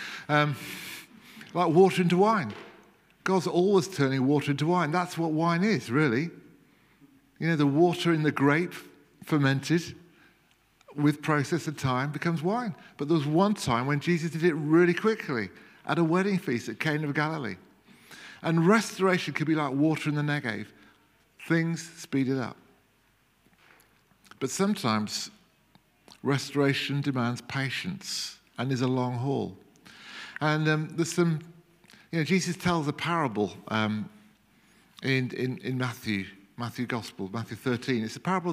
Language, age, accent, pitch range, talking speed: English, 50-69, British, 135-175 Hz, 145 wpm